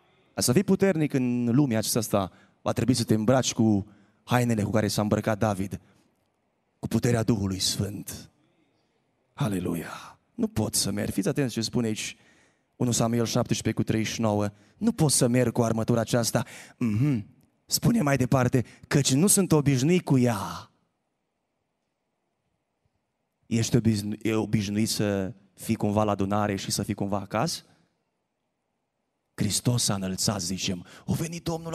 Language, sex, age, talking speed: Romanian, male, 20-39, 145 wpm